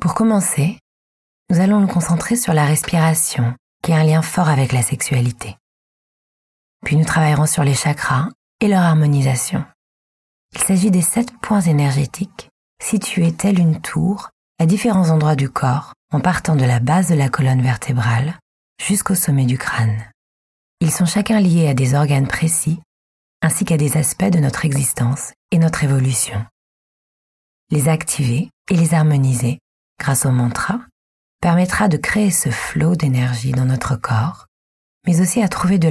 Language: French